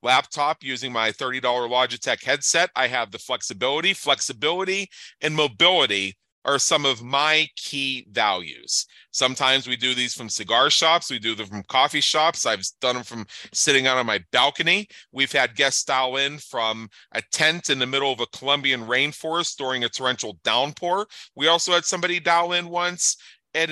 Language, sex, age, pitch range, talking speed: English, male, 40-59, 125-175 Hz, 170 wpm